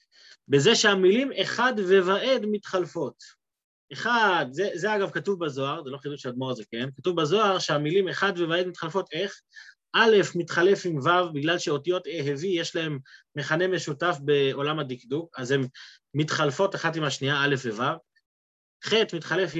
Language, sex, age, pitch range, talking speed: Hebrew, male, 30-49, 145-195 Hz, 145 wpm